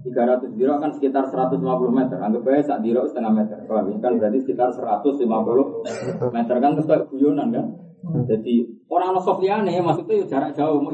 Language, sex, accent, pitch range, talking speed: Indonesian, male, native, 120-170 Hz, 150 wpm